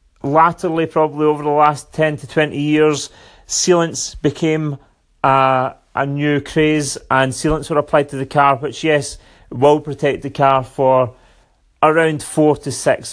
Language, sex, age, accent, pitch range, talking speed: English, male, 30-49, British, 130-165 Hz, 150 wpm